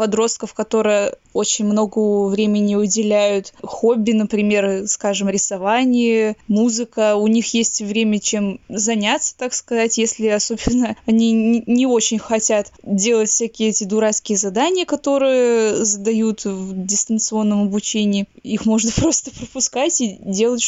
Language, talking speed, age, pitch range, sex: Russian, 120 wpm, 20-39, 210-240 Hz, female